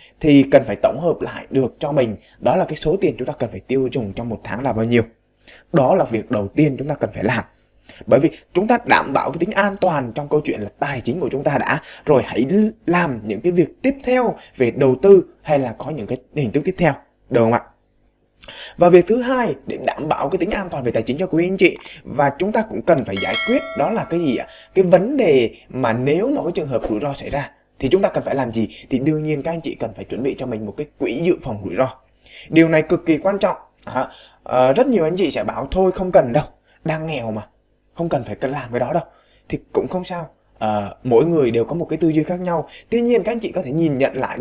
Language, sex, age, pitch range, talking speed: Vietnamese, male, 20-39, 120-190 Hz, 270 wpm